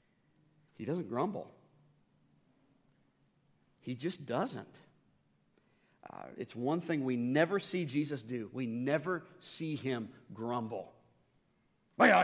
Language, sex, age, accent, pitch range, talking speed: English, male, 40-59, American, 155-195 Hz, 100 wpm